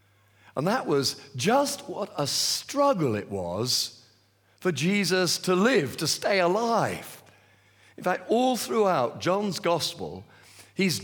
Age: 50-69